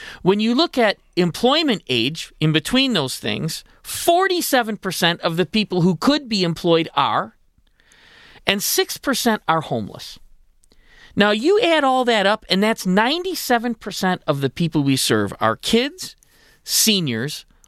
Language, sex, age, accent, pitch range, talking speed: English, male, 40-59, American, 155-250 Hz, 135 wpm